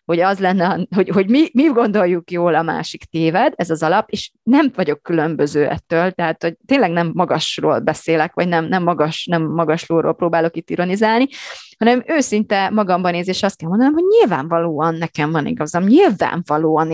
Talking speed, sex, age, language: 175 wpm, female, 30-49, Hungarian